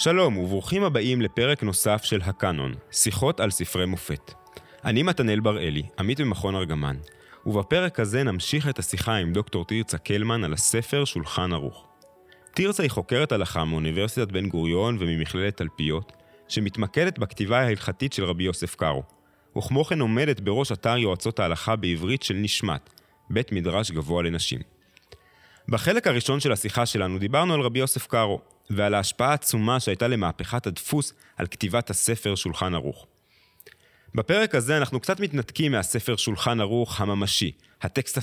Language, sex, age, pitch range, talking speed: Hebrew, male, 30-49, 95-130 Hz, 140 wpm